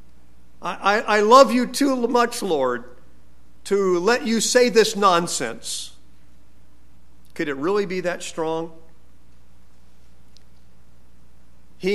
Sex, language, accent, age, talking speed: male, English, American, 50-69, 100 wpm